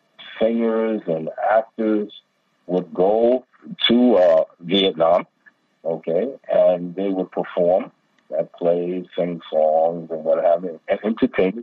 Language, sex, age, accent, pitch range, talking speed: English, male, 50-69, American, 90-135 Hz, 125 wpm